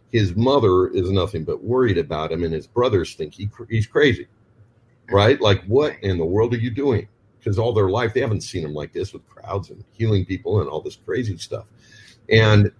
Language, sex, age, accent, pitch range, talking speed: English, male, 50-69, American, 100-120 Hz, 215 wpm